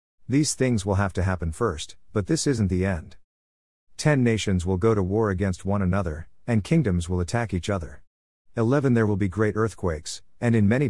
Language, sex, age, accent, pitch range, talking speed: English, male, 50-69, American, 90-115 Hz, 200 wpm